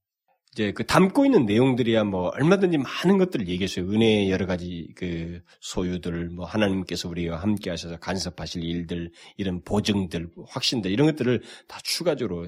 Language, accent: Korean, native